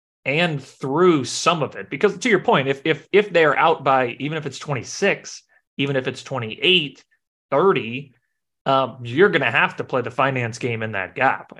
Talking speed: 190 wpm